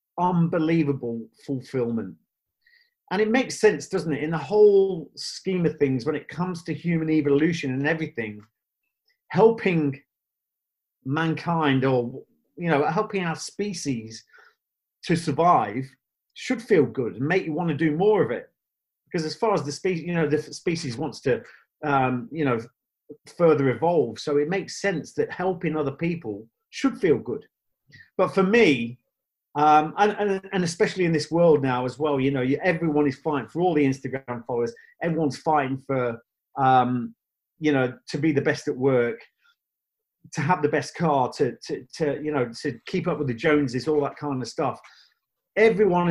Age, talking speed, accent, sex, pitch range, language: 40-59, 170 wpm, British, male, 135-180 Hz, English